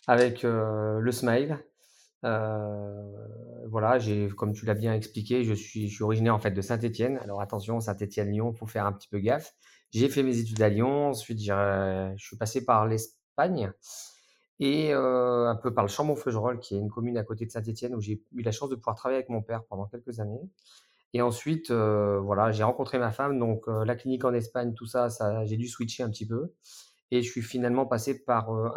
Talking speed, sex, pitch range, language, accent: 215 wpm, male, 110-130 Hz, French, French